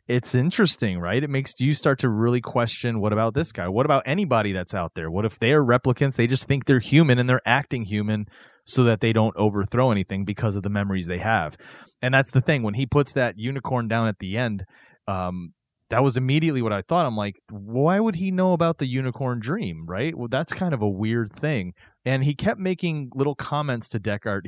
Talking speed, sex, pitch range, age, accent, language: 225 wpm, male, 105-130 Hz, 30-49, American, English